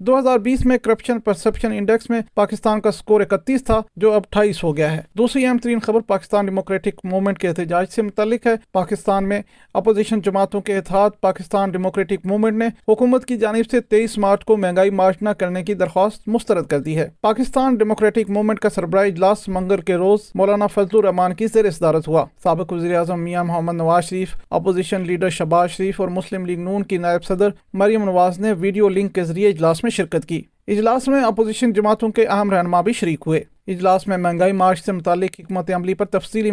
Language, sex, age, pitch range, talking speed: Urdu, male, 40-59, 180-215 Hz, 195 wpm